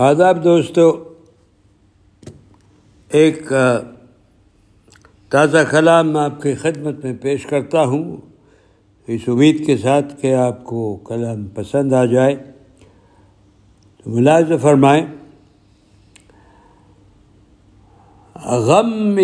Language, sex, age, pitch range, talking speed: Urdu, male, 60-79, 100-155 Hz, 80 wpm